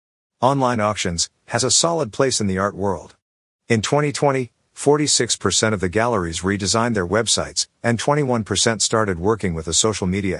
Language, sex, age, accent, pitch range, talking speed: Turkish, male, 50-69, American, 95-120 Hz, 150 wpm